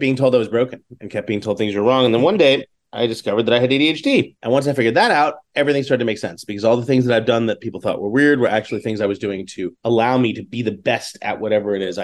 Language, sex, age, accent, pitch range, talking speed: English, male, 30-49, American, 110-130 Hz, 310 wpm